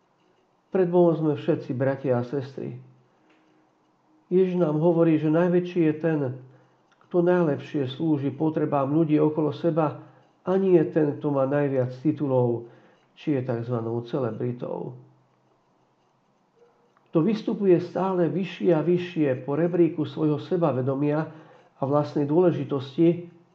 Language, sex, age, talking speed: Slovak, male, 50-69, 115 wpm